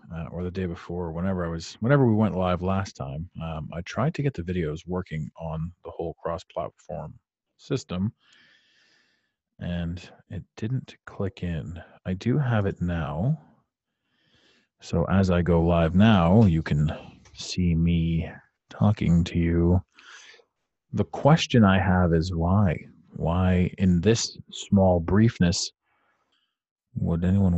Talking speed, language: 135 wpm, English